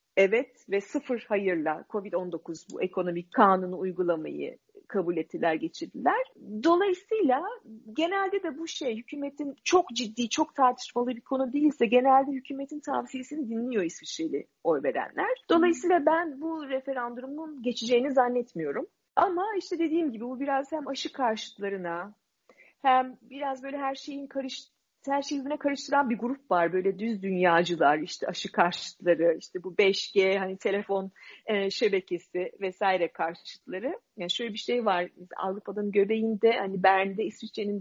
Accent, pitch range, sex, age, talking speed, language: native, 190-275 Hz, female, 40-59, 135 wpm, Turkish